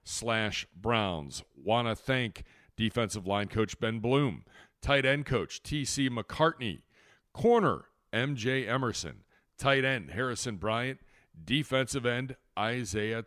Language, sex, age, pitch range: English, male, 40-59, 105-130 Hz